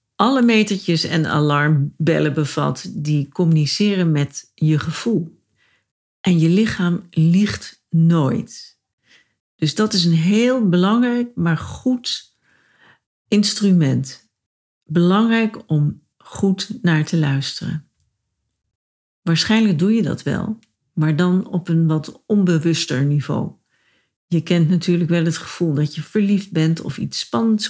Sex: female